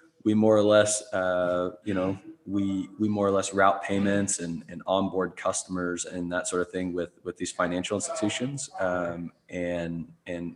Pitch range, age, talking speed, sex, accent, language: 90-105 Hz, 20-39, 175 wpm, male, American, English